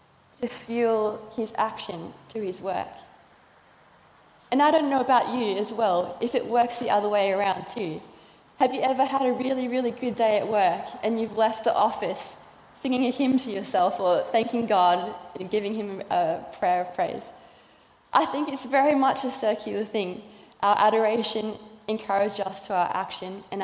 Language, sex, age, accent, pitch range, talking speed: English, female, 20-39, Australian, 200-245 Hz, 180 wpm